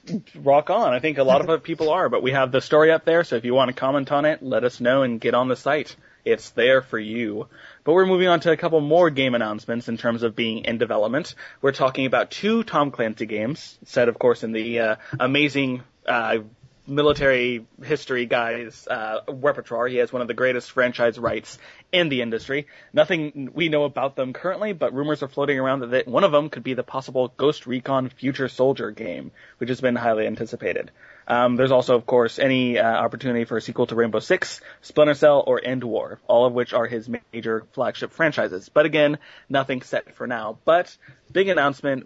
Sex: male